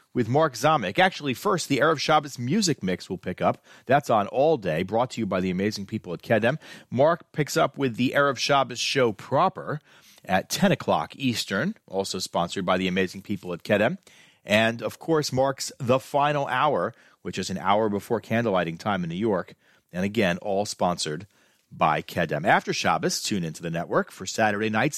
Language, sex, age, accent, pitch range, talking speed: English, male, 40-59, American, 95-135 Hz, 185 wpm